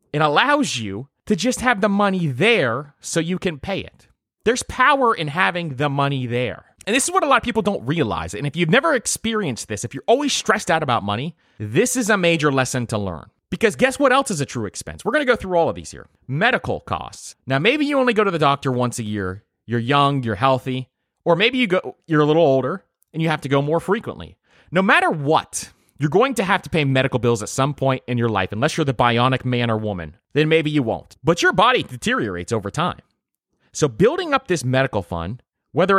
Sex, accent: male, American